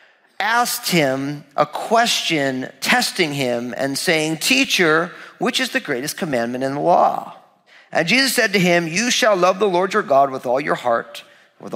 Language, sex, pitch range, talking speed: English, male, 155-215 Hz, 175 wpm